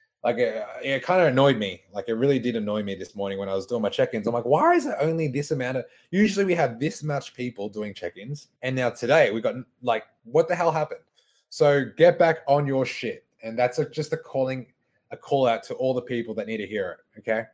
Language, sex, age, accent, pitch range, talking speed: English, male, 20-39, Australian, 110-140 Hz, 250 wpm